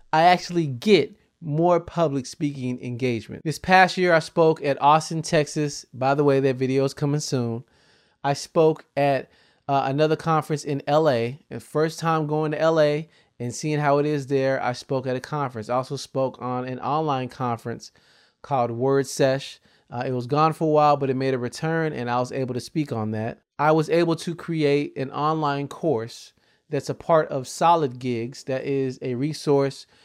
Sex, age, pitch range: male, 30-49, 130-160 Hz